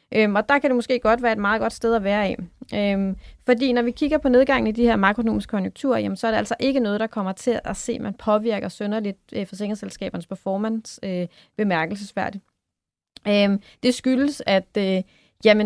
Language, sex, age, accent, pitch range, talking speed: Danish, female, 30-49, native, 200-245 Hz, 205 wpm